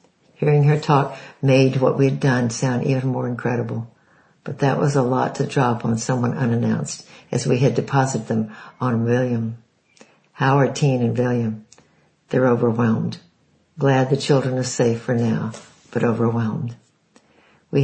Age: 60-79